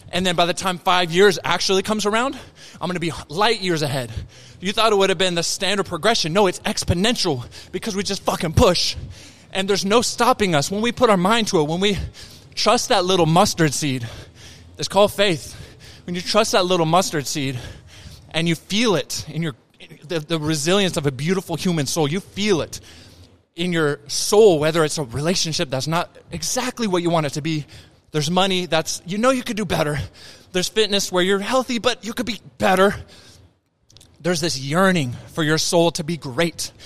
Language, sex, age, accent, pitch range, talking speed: English, male, 20-39, American, 140-195 Hz, 200 wpm